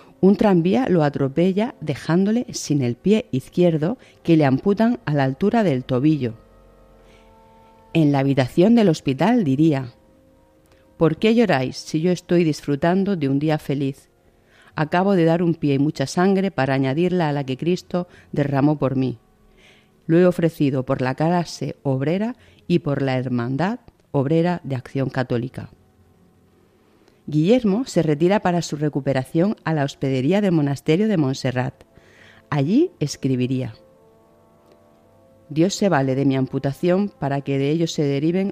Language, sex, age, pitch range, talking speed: Spanish, female, 40-59, 130-175 Hz, 145 wpm